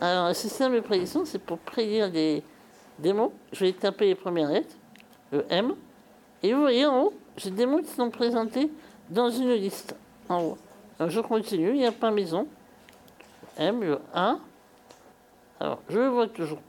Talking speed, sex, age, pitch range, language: 185 wpm, male, 60-79, 180-240 Hz, French